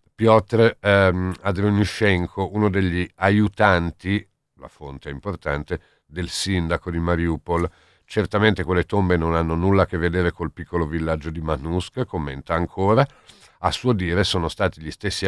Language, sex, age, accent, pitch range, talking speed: Italian, male, 50-69, native, 80-95 Hz, 145 wpm